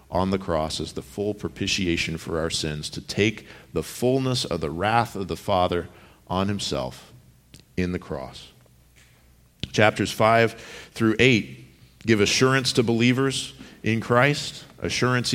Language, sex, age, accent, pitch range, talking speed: English, male, 50-69, American, 90-115 Hz, 140 wpm